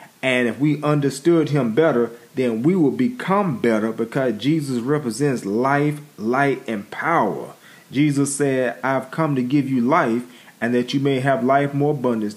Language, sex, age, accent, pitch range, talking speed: English, male, 30-49, American, 115-140 Hz, 165 wpm